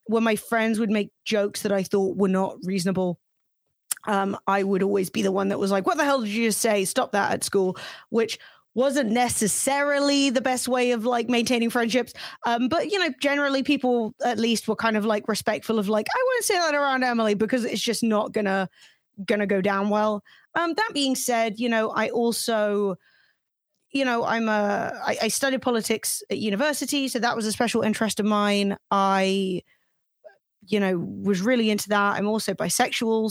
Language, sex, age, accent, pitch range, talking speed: English, female, 20-39, British, 205-250 Hz, 195 wpm